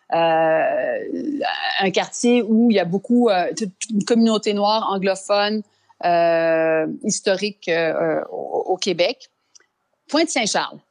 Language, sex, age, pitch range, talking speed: French, female, 30-49, 180-230 Hz, 105 wpm